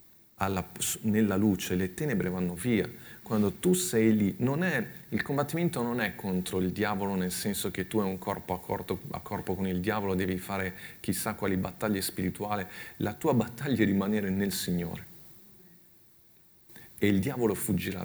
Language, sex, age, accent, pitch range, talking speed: Italian, male, 40-59, native, 95-110 Hz, 170 wpm